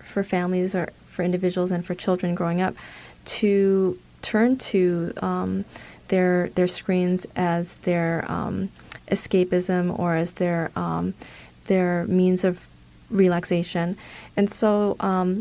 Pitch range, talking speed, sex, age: 175-195 Hz, 125 wpm, female, 30-49